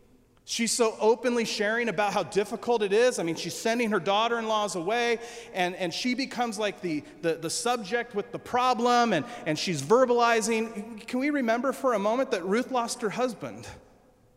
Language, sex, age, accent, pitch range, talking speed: English, male, 40-59, American, 160-235 Hz, 180 wpm